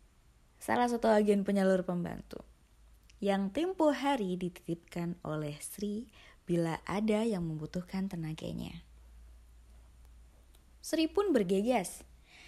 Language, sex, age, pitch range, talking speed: Indonesian, female, 20-39, 160-215 Hz, 90 wpm